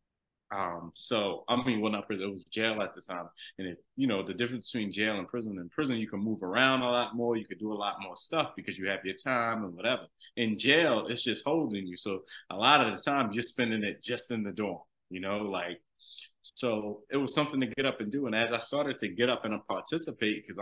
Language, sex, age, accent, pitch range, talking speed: English, male, 20-39, American, 95-115 Hz, 255 wpm